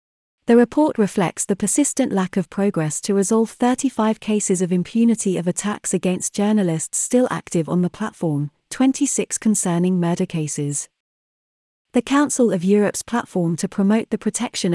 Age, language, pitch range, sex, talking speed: 30-49, English, 175-225 Hz, female, 145 wpm